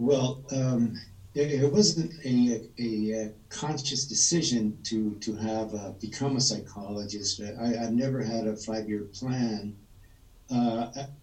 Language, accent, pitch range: English, American, 105-130 Hz